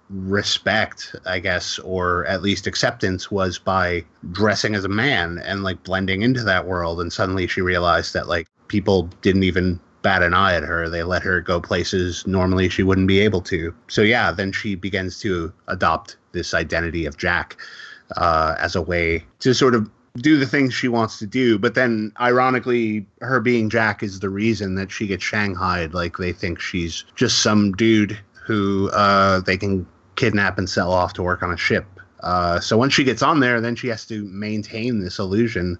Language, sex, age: English, male, 30-49